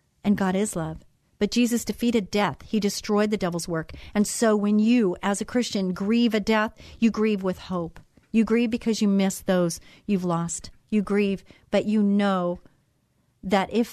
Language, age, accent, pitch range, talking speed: English, 40-59, American, 175-210 Hz, 180 wpm